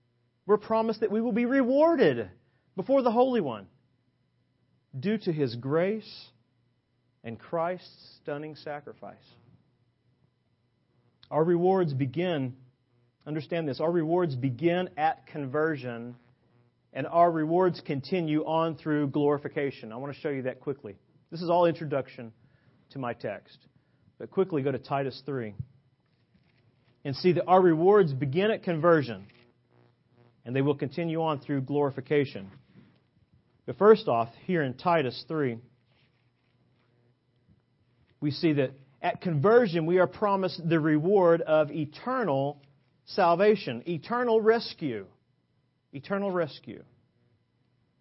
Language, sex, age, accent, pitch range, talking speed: English, male, 40-59, American, 125-170 Hz, 120 wpm